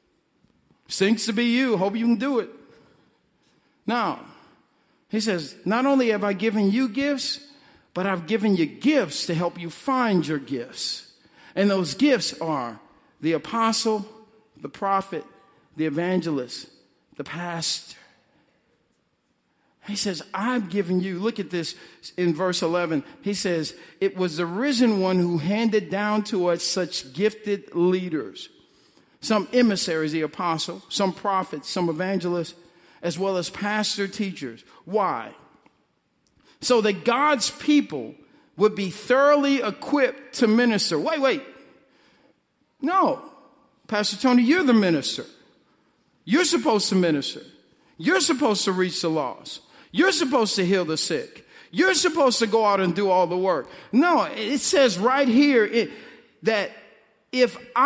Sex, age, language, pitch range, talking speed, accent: male, 50-69, English, 180-255 Hz, 140 wpm, American